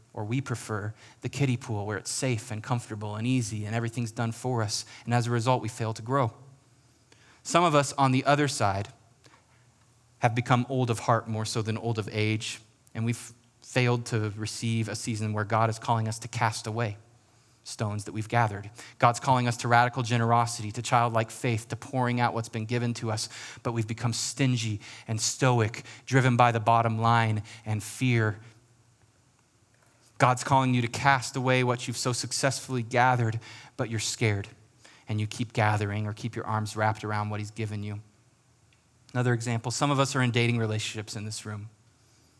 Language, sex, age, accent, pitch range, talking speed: English, male, 30-49, American, 110-125 Hz, 190 wpm